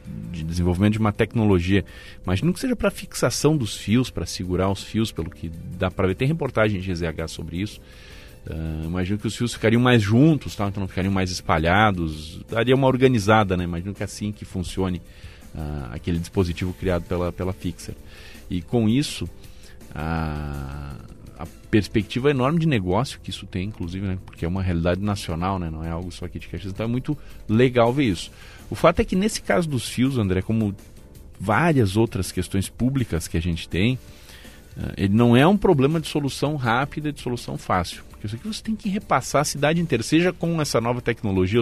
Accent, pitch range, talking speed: Brazilian, 90-125 Hz, 190 wpm